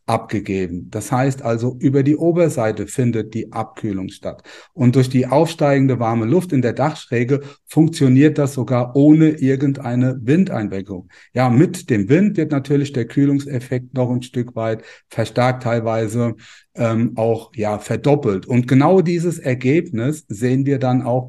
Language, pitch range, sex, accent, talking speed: German, 115-140 Hz, male, German, 145 wpm